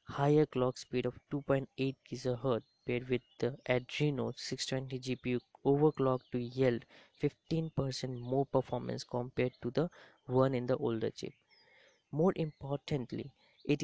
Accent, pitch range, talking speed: Indian, 125-140 Hz, 125 wpm